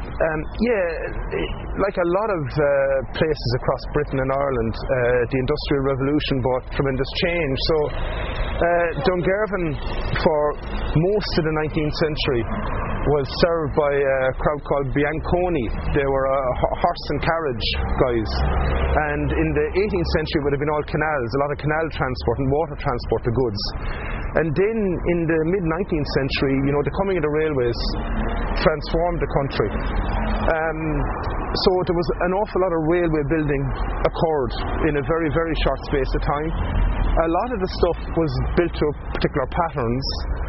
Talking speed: 160 wpm